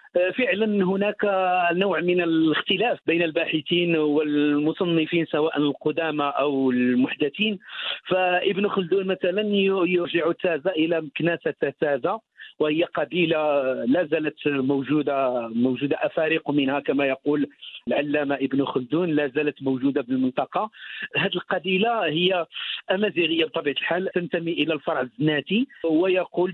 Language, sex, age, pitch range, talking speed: Arabic, male, 50-69, 145-180 Hz, 110 wpm